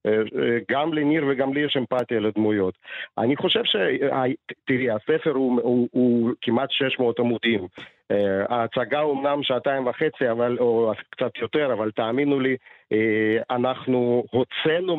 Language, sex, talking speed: Hebrew, male, 125 wpm